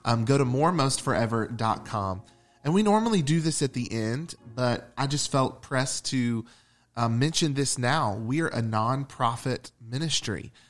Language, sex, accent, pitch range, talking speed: English, male, American, 115-140 Hz, 150 wpm